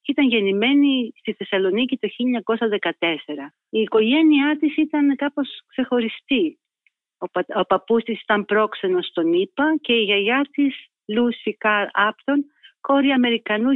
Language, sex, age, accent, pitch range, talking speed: Greek, female, 40-59, native, 205-280 Hz, 130 wpm